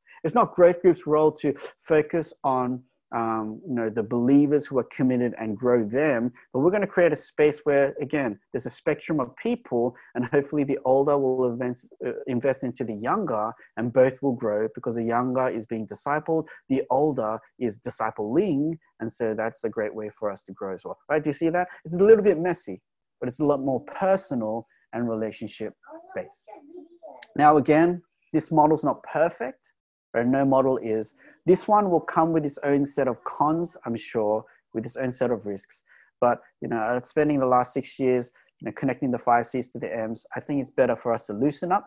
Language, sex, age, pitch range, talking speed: English, male, 30-49, 115-160 Hz, 205 wpm